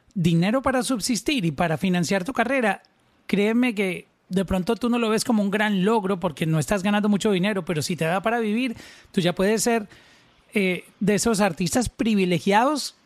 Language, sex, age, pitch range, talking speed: Spanish, male, 40-59, 180-225 Hz, 190 wpm